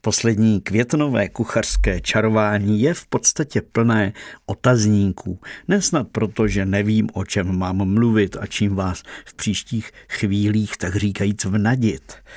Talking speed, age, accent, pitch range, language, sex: 125 wpm, 50-69, native, 100-115 Hz, Czech, male